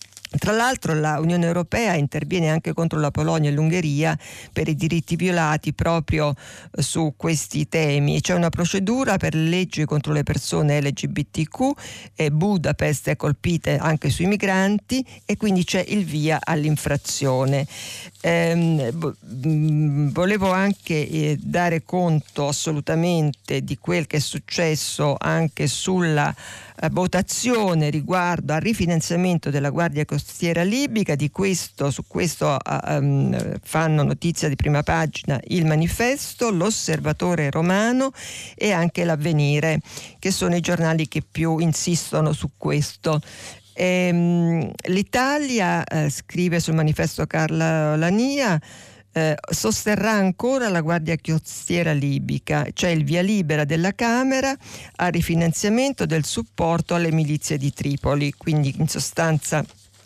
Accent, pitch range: native, 145-180 Hz